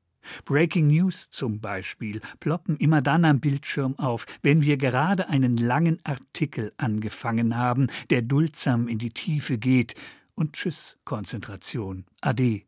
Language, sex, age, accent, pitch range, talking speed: German, male, 50-69, German, 115-150 Hz, 135 wpm